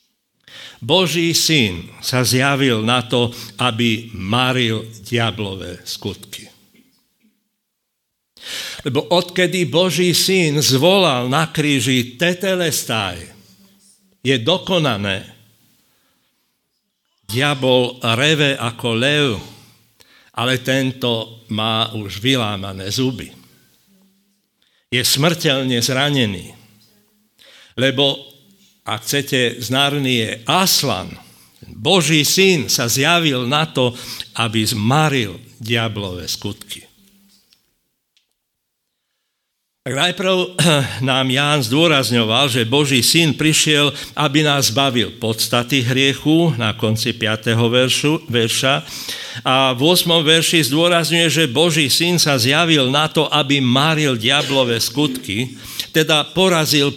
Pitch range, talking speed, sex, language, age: 115-160 Hz, 90 wpm, male, Slovak, 60-79